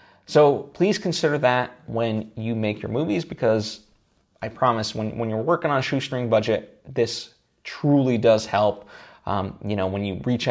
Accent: American